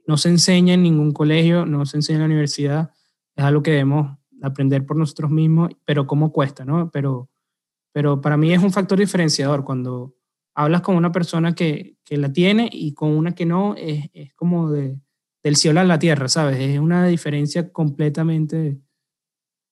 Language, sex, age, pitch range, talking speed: Spanish, male, 20-39, 145-175 Hz, 185 wpm